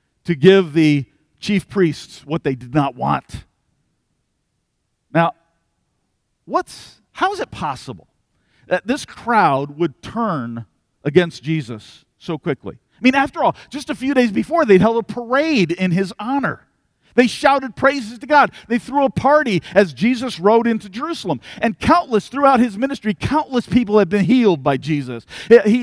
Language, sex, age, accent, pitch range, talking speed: English, male, 50-69, American, 160-240 Hz, 160 wpm